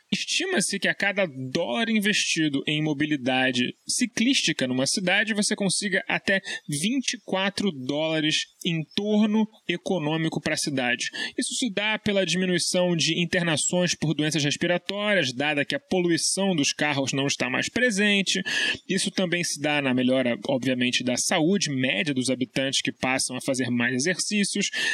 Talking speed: 145 wpm